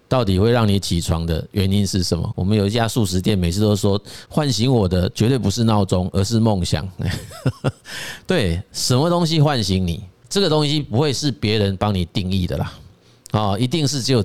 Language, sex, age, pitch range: Chinese, male, 30-49, 95-120 Hz